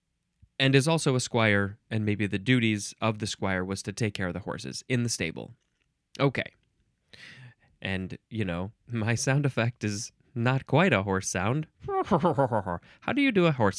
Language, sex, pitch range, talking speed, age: English, male, 100-165 Hz, 180 wpm, 20-39